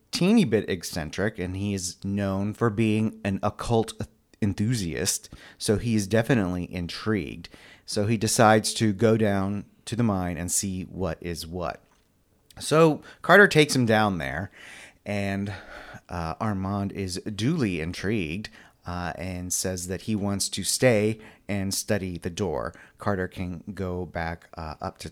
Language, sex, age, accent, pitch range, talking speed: English, male, 30-49, American, 95-110 Hz, 150 wpm